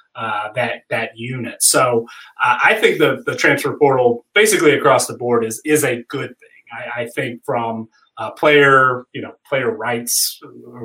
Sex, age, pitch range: male, 30-49, 115-145 Hz